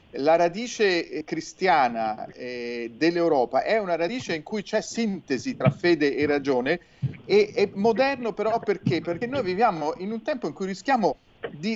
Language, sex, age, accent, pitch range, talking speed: Italian, male, 40-59, native, 160-215 Hz, 160 wpm